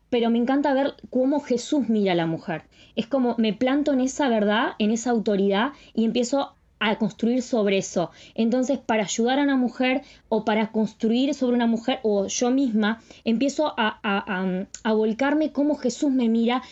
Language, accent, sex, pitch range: Spanish, Argentinian, female, 215-265 Hz